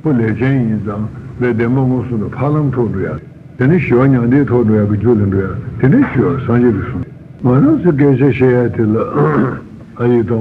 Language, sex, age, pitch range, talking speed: Italian, male, 60-79, 115-140 Hz, 125 wpm